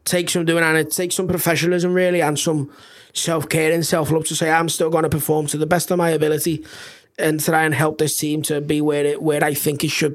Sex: male